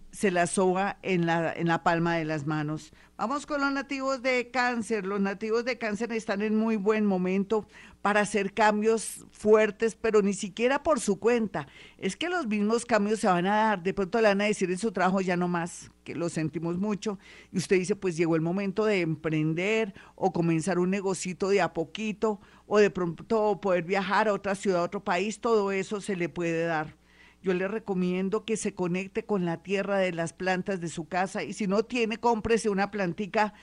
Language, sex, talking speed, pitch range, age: Spanish, female, 205 wpm, 180-225 Hz, 50-69